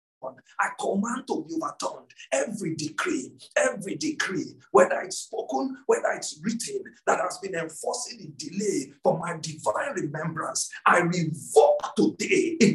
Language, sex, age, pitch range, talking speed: English, male, 50-69, 195-320 Hz, 135 wpm